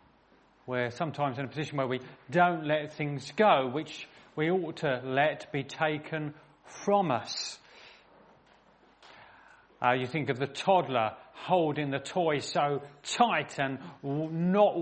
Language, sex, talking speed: English, male, 135 wpm